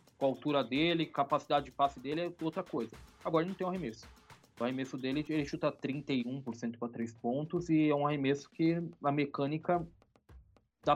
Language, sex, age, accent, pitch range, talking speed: Portuguese, male, 20-39, Brazilian, 130-165 Hz, 180 wpm